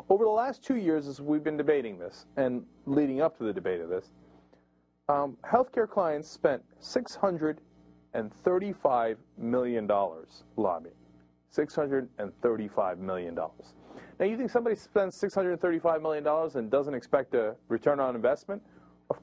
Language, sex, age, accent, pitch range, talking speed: English, male, 40-59, American, 125-185 Hz, 135 wpm